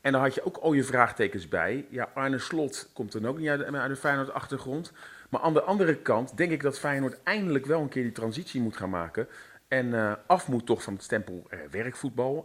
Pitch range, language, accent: 115-145 Hz, Dutch, Dutch